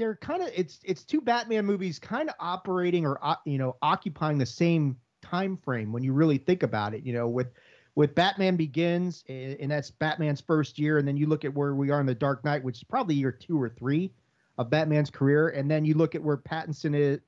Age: 40-59